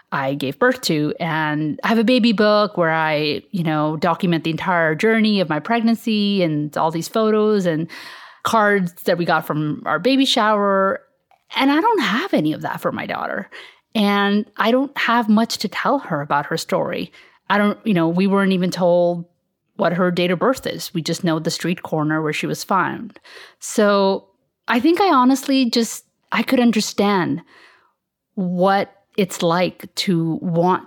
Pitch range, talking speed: 165-220 Hz, 180 wpm